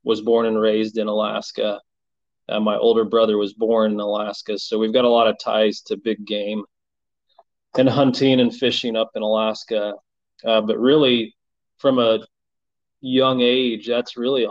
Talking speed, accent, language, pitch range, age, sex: 165 wpm, American, English, 105-120 Hz, 20-39, male